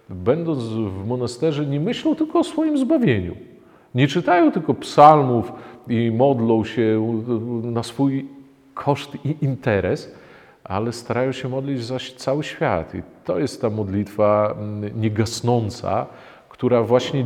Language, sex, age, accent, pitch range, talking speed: Polish, male, 40-59, native, 105-130 Hz, 125 wpm